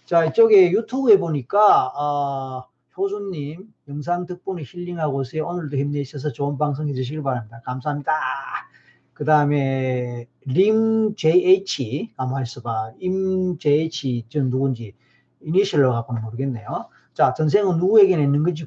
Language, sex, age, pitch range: Korean, male, 40-59, 130-180 Hz